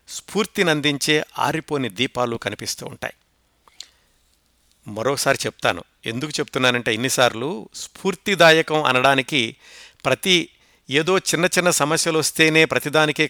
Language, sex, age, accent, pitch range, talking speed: Telugu, male, 60-79, native, 125-165 Hz, 90 wpm